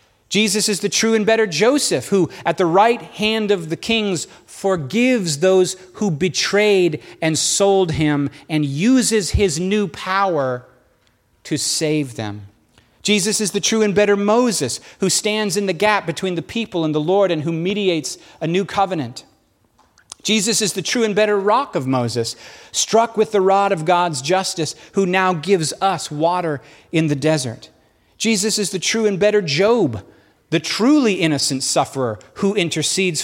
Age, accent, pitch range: 40-59, American, 135-205 Hz